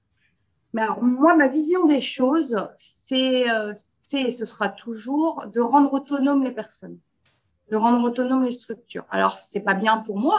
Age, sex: 30-49, female